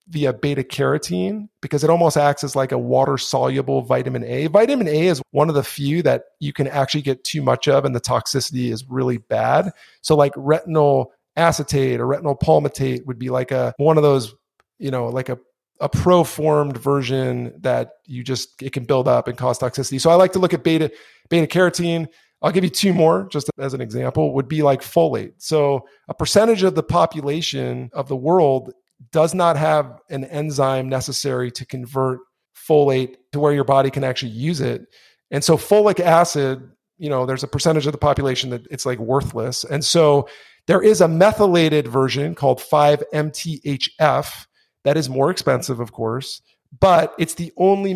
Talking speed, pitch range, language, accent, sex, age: 185 wpm, 130-160 Hz, English, American, male, 40-59